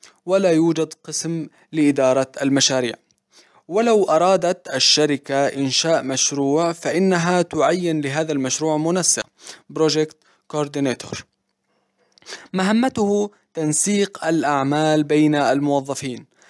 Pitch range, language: 135-175 Hz, Arabic